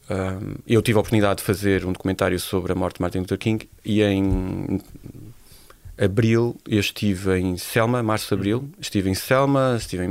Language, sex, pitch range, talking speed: Portuguese, male, 95-110 Hz, 185 wpm